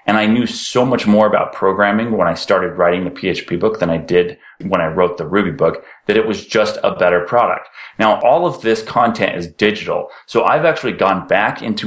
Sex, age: male, 30-49